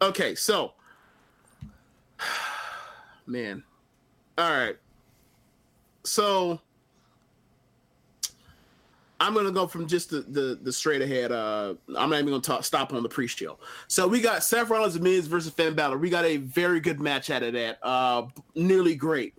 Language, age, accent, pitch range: English, 30-49, American, 140-190 Hz